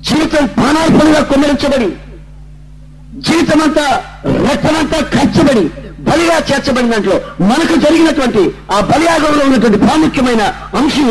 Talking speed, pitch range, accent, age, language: 90 wpm, 150-220 Hz, native, 50-69, Telugu